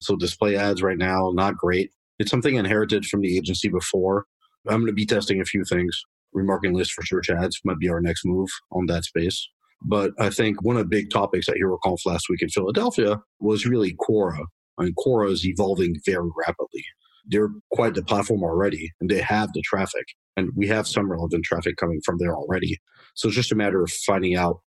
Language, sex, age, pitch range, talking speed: English, male, 40-59, 90-105 Hz, 210 wpm